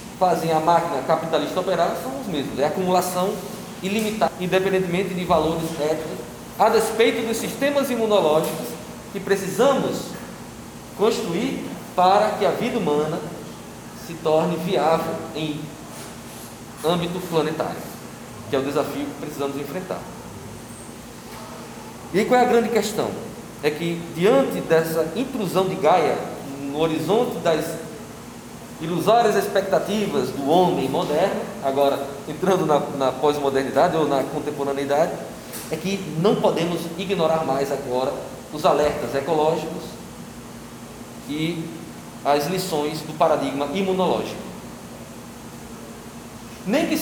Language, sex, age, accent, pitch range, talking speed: Portuguese, male, 20-39, Brazilian, 150-210 Hz, 110 wpm